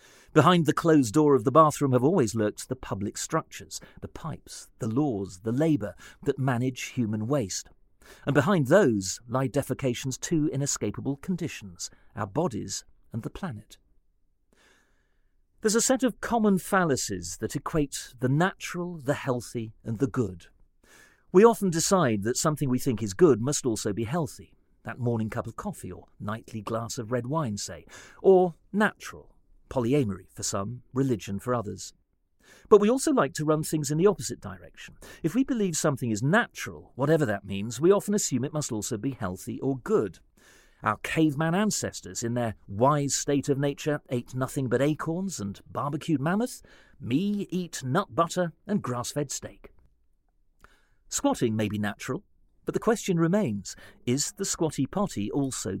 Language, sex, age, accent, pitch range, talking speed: English, male, 40-59, British, 110-160 Hz, 160 wpm